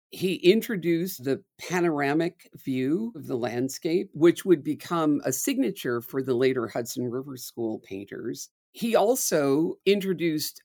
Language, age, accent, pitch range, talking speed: English, 50-69, American, 130-180 Hz, 130 wpm